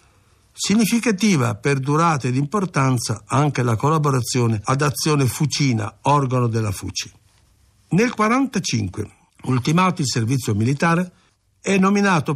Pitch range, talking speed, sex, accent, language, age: 120-170 Hz, 105 wpm, male, native, Italian, 50-69